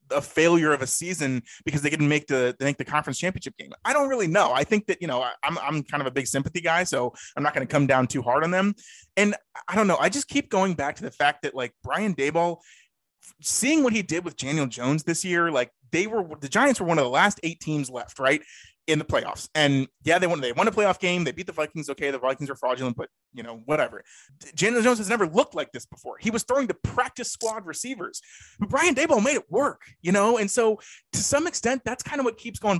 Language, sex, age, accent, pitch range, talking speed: English, male, 30-49, American, 145-220 Hz, 260 wpm